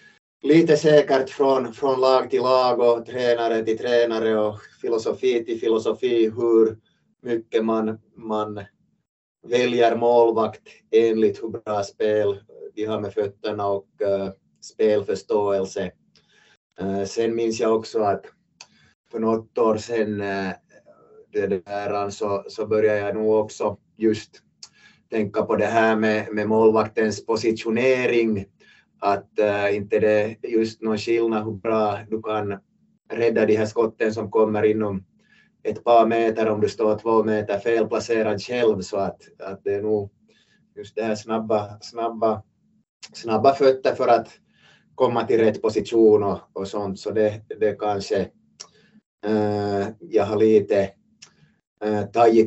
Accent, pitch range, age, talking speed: Finnish, 105-120 Hz, 30-49, 135 wpm